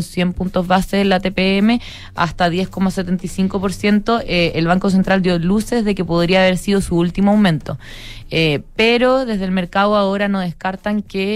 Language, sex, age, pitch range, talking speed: Spanish, female, 20-39, 175-205 Hz, 165 wpm